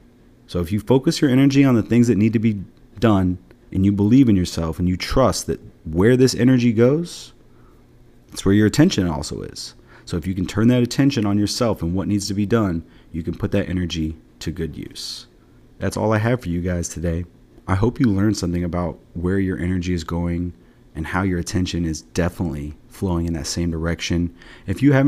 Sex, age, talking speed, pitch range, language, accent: male, 30-49, 215 wpm, 90-115 Hz, English, American